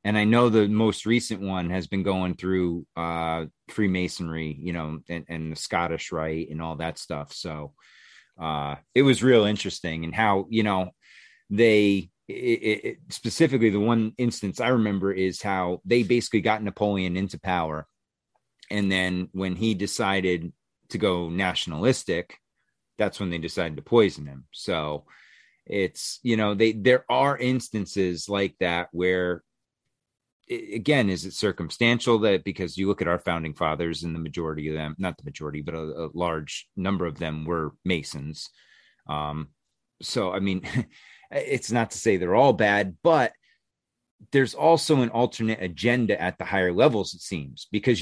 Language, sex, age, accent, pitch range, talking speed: English, male, 30-49, American, 85-110 Hz, 165 wpm